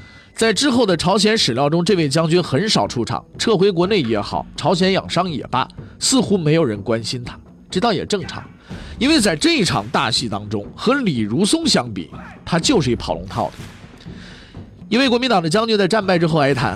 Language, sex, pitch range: Chinese, male, 140-205 Hz